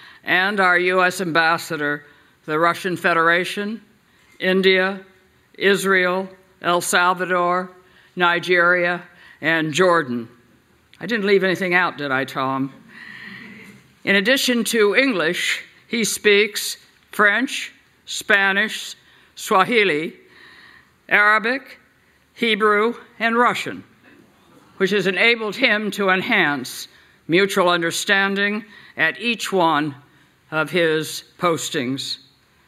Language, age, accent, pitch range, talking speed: English, 60-79, American, 170-205 Hz, 90 wpm